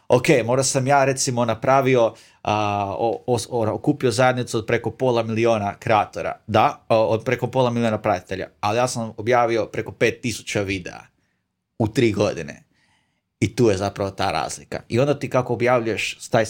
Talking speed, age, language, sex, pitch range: 155 wpm, 30-49, Croatian, male, 105-130 Hz